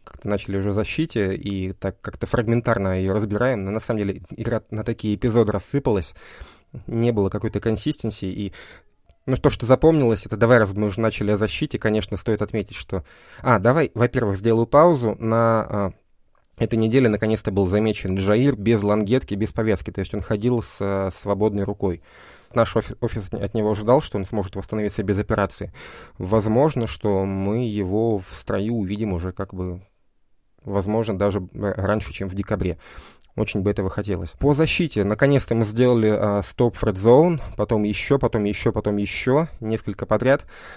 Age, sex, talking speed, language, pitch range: 20-39, male, 165 wpm, Russian, 100-115 Hz